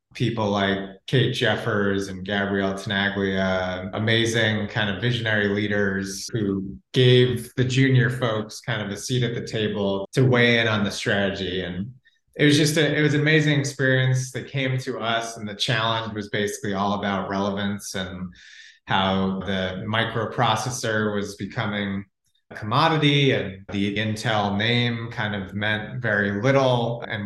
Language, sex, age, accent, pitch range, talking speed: English, male, 30-49, American, 100-125 Hz, 150 wpm